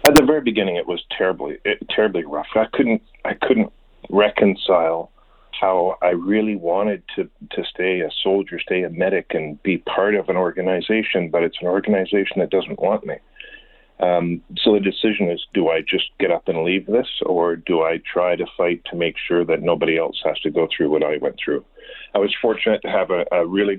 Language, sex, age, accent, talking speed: English, male, 40-59, American, 205 wpm